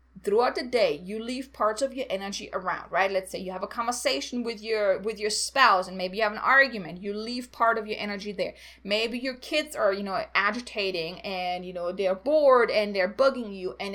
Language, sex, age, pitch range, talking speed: English, female, 30-49, 200-245 Hz, 225 wpm